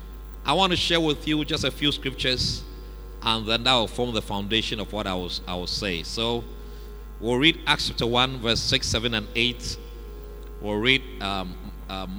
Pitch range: 95-120 Hz